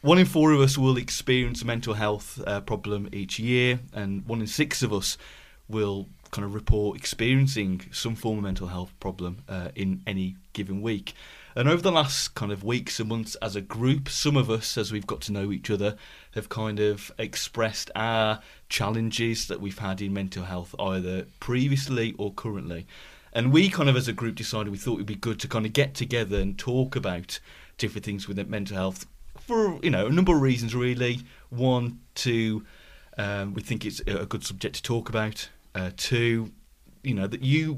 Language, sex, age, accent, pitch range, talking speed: English, male, 30-49, British, 100-125 Hz, 200 wpm